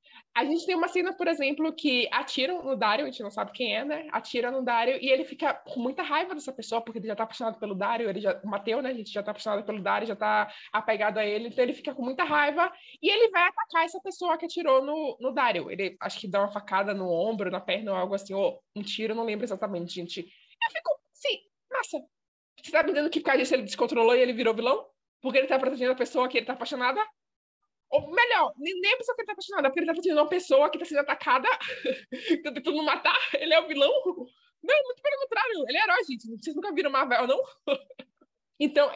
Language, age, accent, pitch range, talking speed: Portuguese, 20-39, Brazilian, 230-320 Hz, 245 wpm